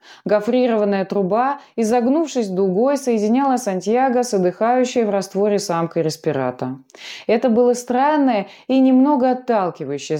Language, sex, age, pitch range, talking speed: Russian, female, 20-39, 180-260 Hz, 105 wpm